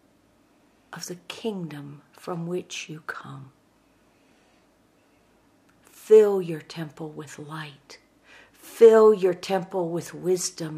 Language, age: English, 60-79